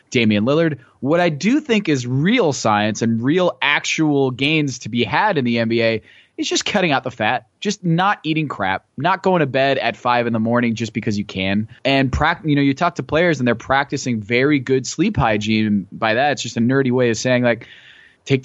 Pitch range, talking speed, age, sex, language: 115-150 Hz, 220 wpm, 20-39, male, English